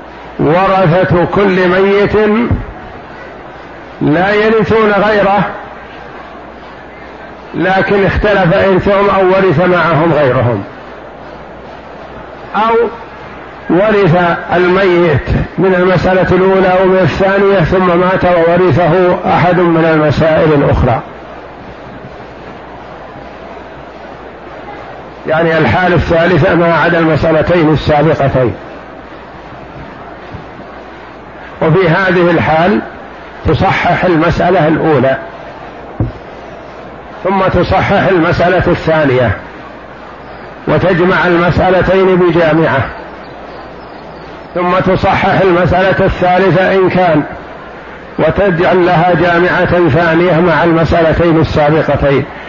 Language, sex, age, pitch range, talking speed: Arabic, male, 50-69, 165-190 Hz, 70 wpm